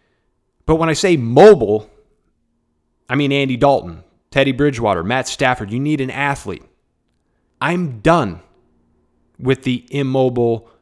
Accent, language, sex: American, English, male